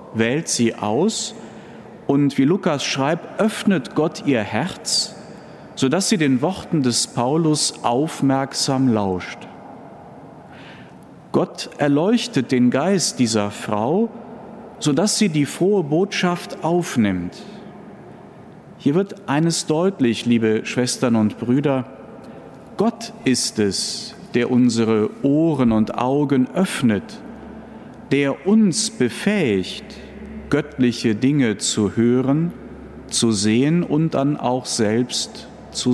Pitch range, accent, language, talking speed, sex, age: 115-170 Hz, German, German, 105 wpm, male, 50-69